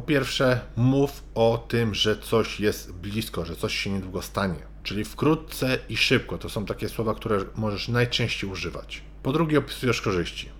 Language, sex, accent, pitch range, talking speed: Polish, male, native, 110-130 Hz, 170 wpm